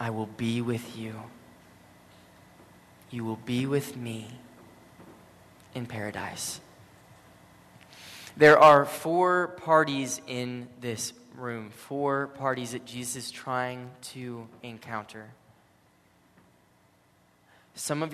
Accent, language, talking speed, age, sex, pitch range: American, English, 95 wpm, 20-39, male, 120-145 Hz